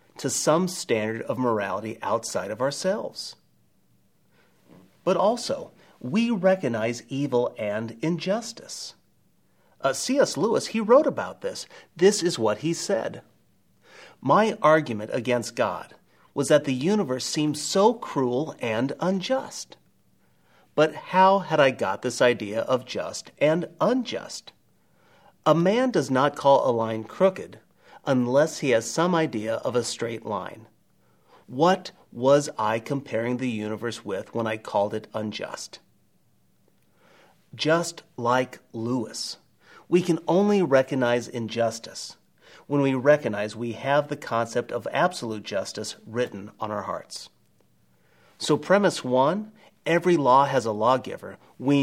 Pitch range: 115-175 Hz